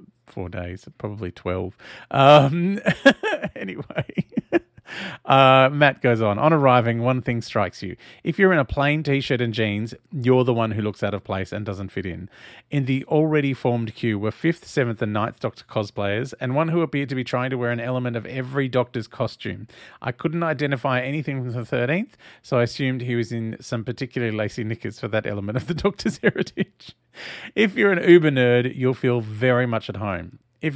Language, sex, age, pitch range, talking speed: English, male, 40-59, 110-135 Hz, 195 wpm